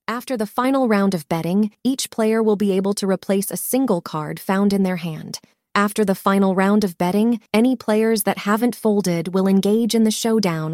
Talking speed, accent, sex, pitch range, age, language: 200 wpm, American, female, 185-230 Hz, 20-39, English